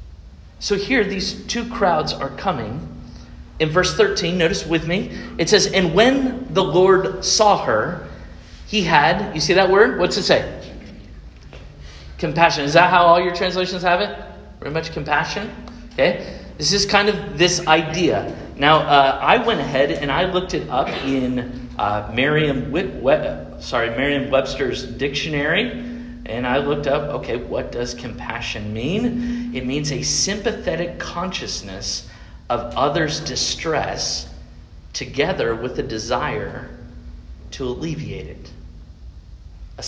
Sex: male